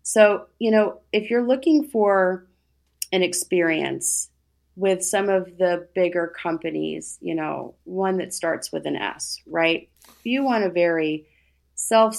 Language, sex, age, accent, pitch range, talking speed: English, female, 30-49, American, 165-185 Hz, 150 wpm